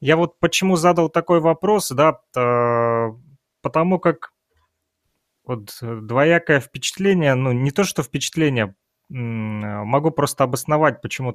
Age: 30-49